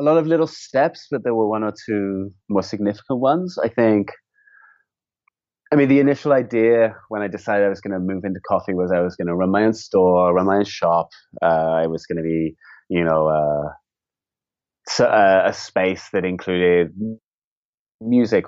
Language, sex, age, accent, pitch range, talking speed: English, male, 20-39, British, 85-105 Hz, 190 wpm